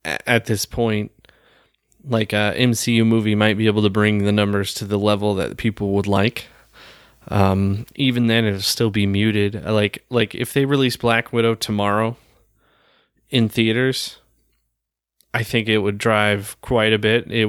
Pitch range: 105-120 Hz